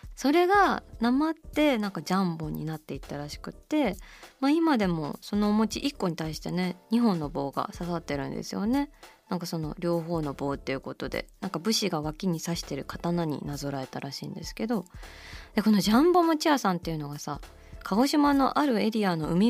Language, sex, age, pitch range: Japanese, female, 20-39, 170-260 Hz